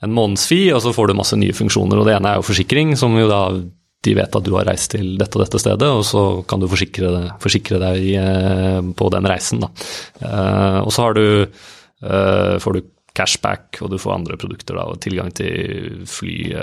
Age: 30-49